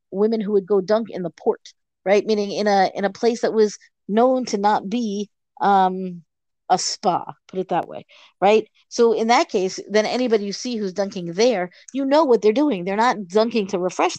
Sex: female